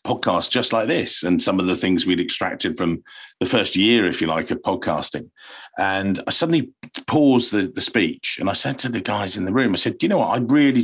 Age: 50-69